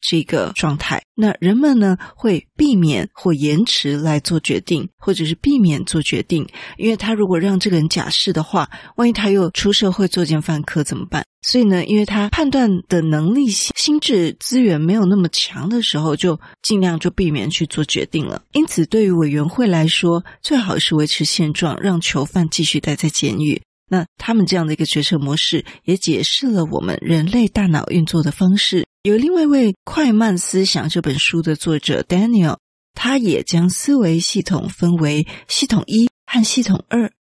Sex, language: female, Chinese